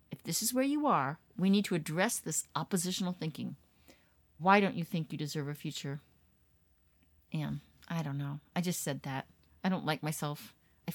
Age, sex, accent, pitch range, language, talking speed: 40-59, female, American, 145-200 Hz, English, 185 wpm